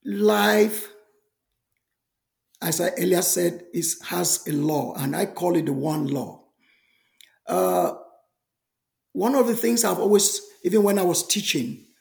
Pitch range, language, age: 165-220 Hz, English, 50-69